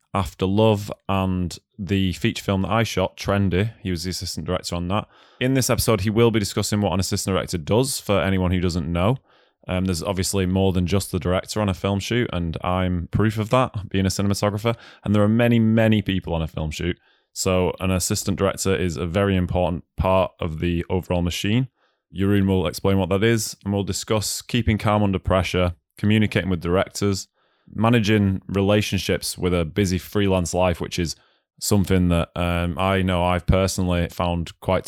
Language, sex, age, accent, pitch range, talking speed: English, male, 20-39, British, 90-105 Hz, 190 wpm